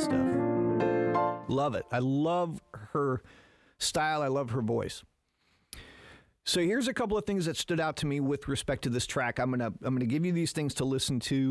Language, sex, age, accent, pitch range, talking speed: English, male, 40-59, American, 110-145 Hz, 210 wpm